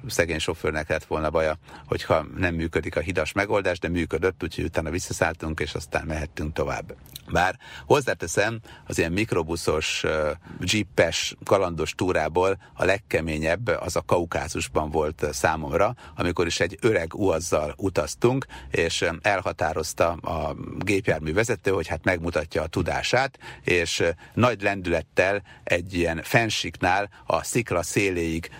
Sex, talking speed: male, 125 wpm